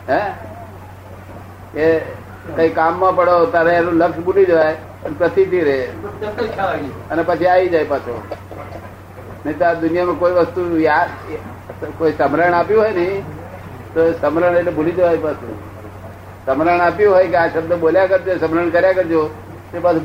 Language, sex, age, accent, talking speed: Gujarati, male, 60-79, native, 140 wpm